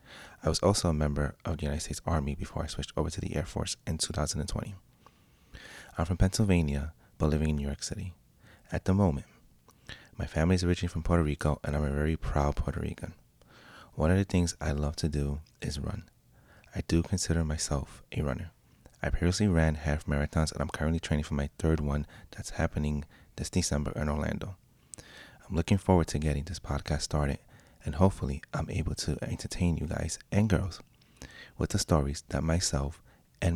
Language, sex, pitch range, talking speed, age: English, male, 75-90 Hz, 190 wpm, 30-49